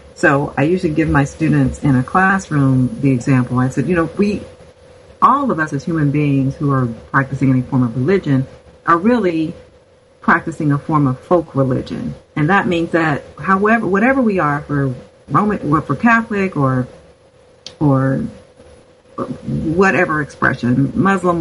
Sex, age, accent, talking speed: female, 40-59, American, 150 wpm